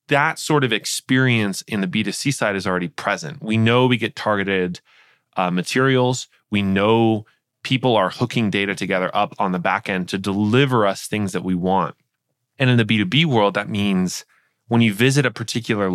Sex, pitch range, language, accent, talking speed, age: male, 100-130 Hz, English, American, 185 wpm, 20-39